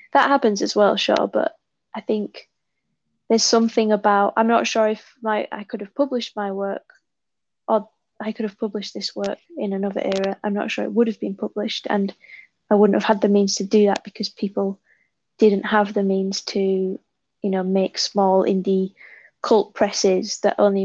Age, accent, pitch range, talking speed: 20-39, British, 195-215 Hz, 190 wpm